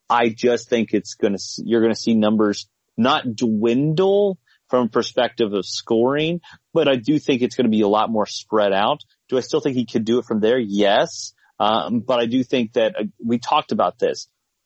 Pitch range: 105-130 Hz